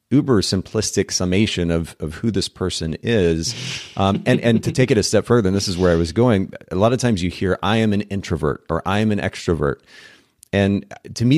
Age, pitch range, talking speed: 30-49, 85-105 Hz, 225 wpm